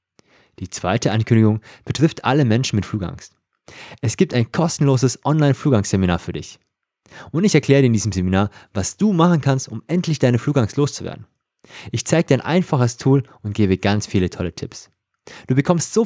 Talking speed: 175 wpm